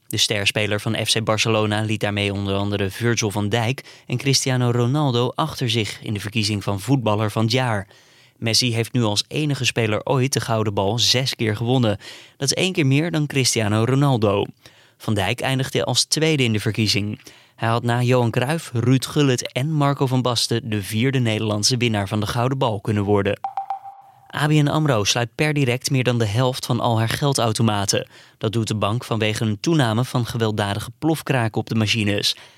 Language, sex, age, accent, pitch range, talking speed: Dutch, male, 20-39, Dutch, 110-135 Hz, 185 wpm